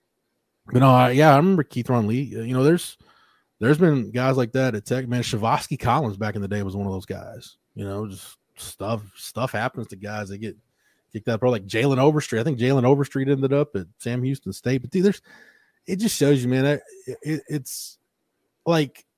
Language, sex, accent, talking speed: English, male, American, 210 wpm